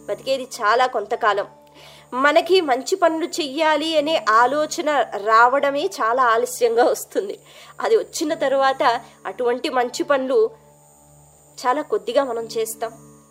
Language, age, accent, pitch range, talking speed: Telugu, 20-39, native, 225-325 Hz, 105 wpm